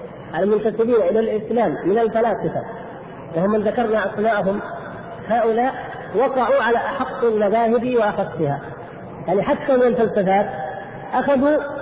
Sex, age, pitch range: female, 40-59, 185-245 Hz